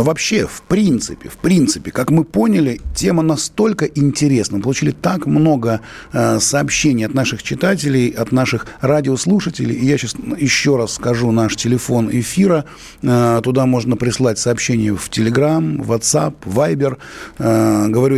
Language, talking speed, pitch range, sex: Russian, 140 wpm, 115-140 Hz, male